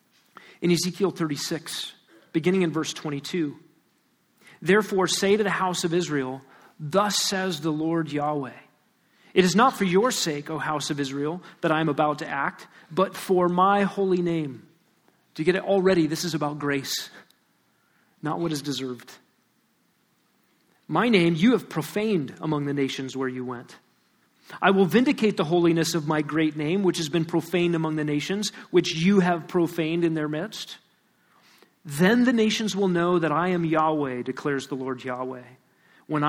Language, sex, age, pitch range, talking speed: English, male, 40-59, 155-190 Hz, 170 wpm